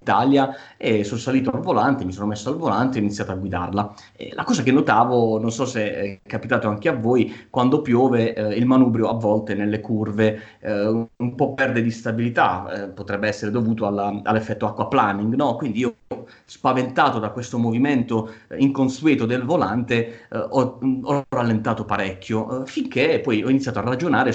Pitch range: 105-130 Hz